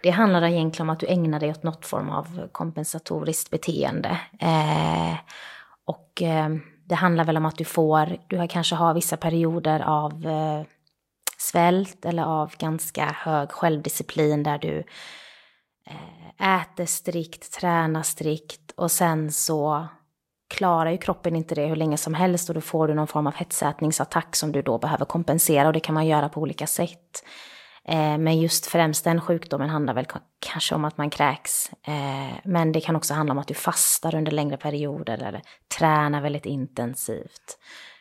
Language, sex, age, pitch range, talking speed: Swedish, female, 20-39, 150-170 Hz, 165 wpm